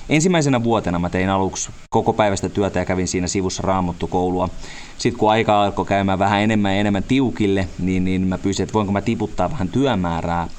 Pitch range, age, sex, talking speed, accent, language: 90-110 Hz, 30-49, male, 185 wpm, native, Finnish